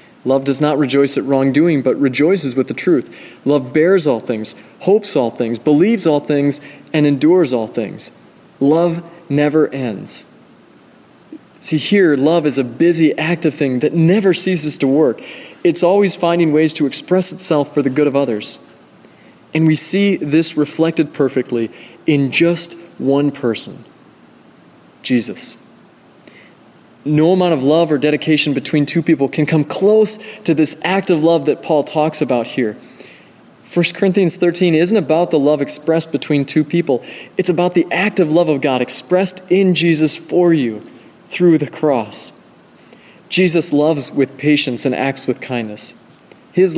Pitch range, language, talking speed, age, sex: 140-170 Hz, English, 155 wpm, 20-39, male